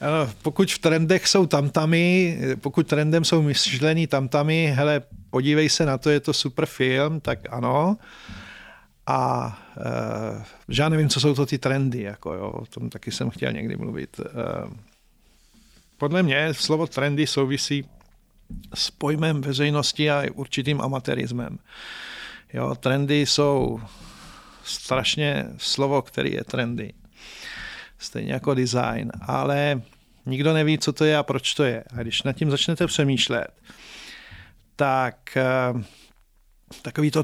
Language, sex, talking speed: Czech, male, 130 wpm